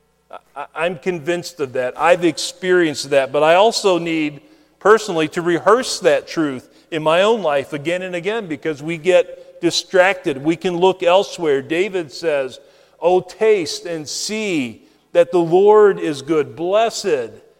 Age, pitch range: 40-59, 130-160 Hz